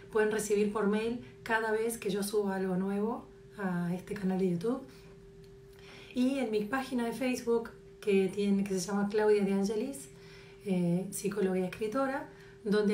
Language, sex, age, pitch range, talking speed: Spanish, female, 30-49, 190-220 Hz, 160 wpm